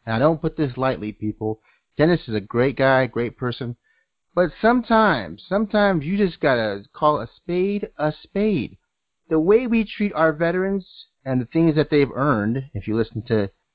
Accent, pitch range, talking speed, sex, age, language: American, 115-175 Hz, 190 wpm, male, 30-49, English